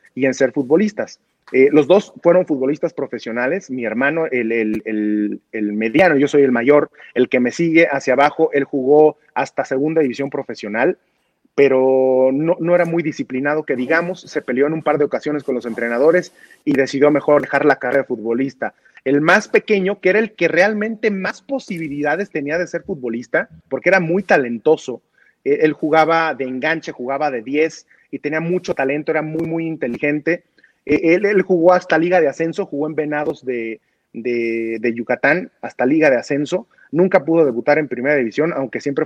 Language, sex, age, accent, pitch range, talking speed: Spanish, male, 30-49, Mexican, 135-175 Hz, 180 wpm